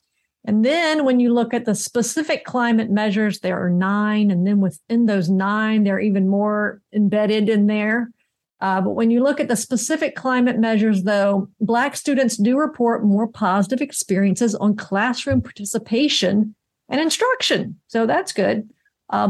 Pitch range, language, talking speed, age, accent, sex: 200-240 Hz, English, 160 wpm, 50-69, American, female